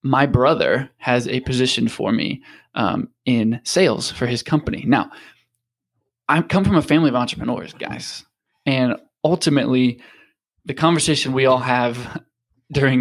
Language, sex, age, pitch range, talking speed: English, male, 20-39, 125-145 Hz, 140 wpm